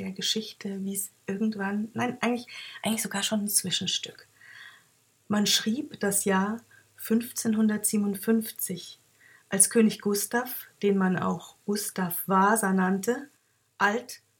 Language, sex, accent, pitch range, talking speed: German, female, German, 190-230 Hz, 115 wpm